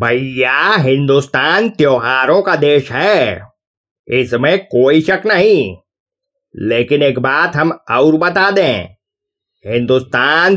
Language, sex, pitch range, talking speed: Hindi, male, 135-180 Hz, 100 wpm